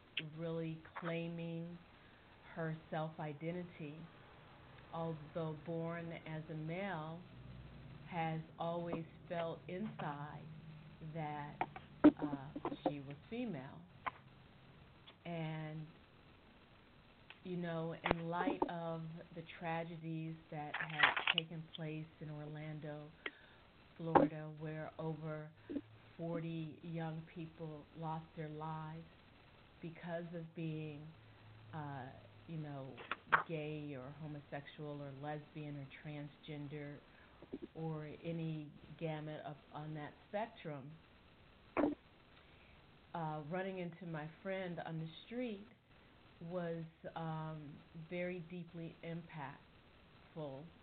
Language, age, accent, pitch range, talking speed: English, 50-69, American, 150-165 Hz, 85 wpm